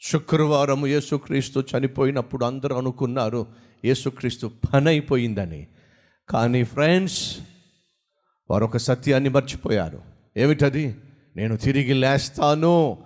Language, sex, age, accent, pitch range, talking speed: Telugu, male, 50-69, native, 125-170 Hz, 80 wpm